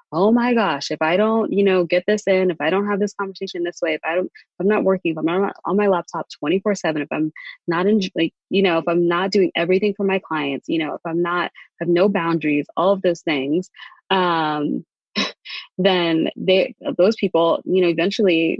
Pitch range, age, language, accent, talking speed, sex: 160-190 Hz, 20-39, English, American, 225 wpm, female